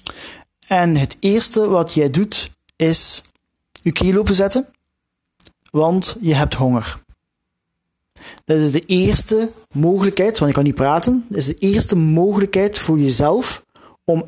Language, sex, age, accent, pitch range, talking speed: Dutch, male, 40-59, Dutch, 130-195 Hz, 135 wpm